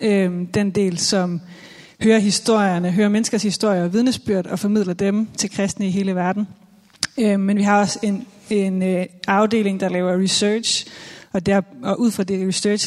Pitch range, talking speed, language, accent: 185-215 Hz, 165 wpm, Danish, native